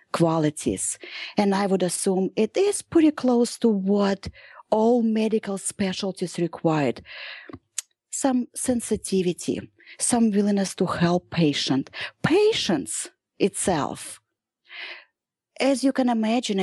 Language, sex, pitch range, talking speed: English, female, 165-220 Hz, 100 wpm